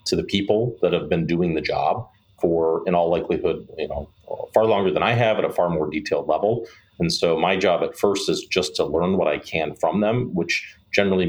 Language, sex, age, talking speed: English, male, 40-59, 230 wpm